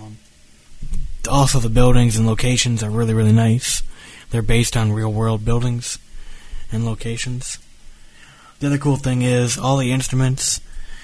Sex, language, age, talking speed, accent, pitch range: male, English, 20-39, 130 wpm, American, 105-125 Hz